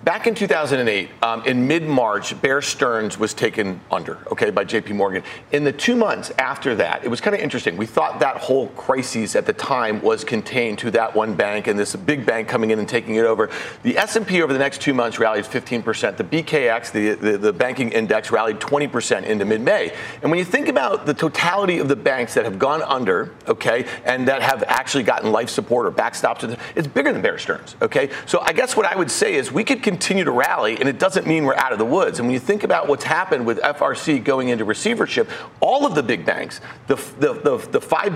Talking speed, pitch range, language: 230 wpm, 120-195 Hz, English